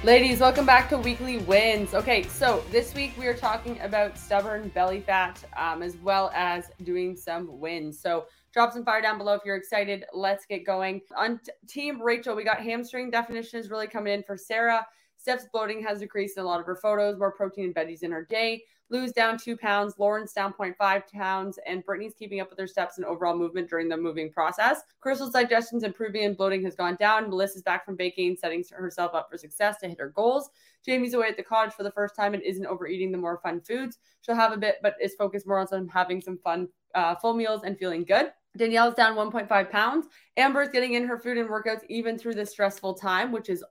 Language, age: English, 20-39